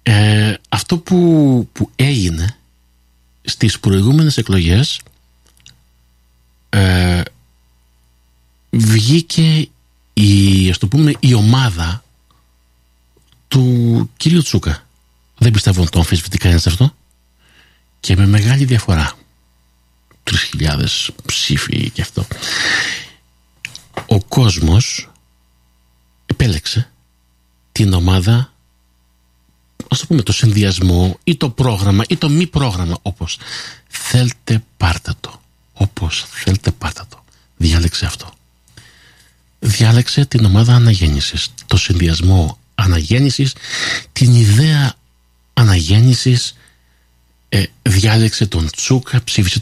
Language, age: Greek, 50-69